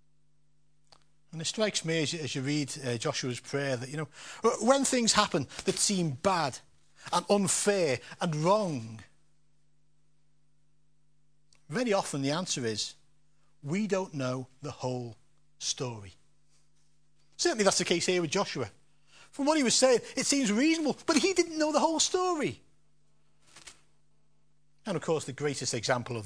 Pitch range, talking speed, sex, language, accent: 145-195 Hz, 140 wpm, male, English, British